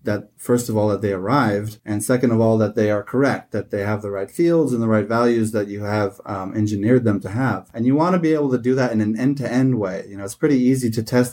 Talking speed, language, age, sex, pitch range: 280 wpm, English, 20-39, male, 105-125 Hz